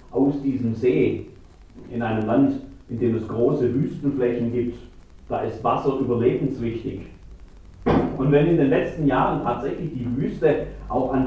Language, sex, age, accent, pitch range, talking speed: German, male, 40-59, German, 110-140 Hz, 145 wpm